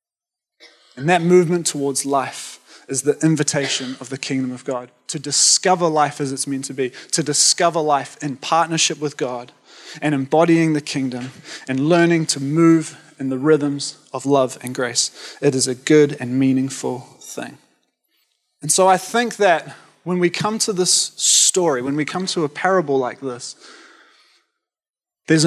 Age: 20-39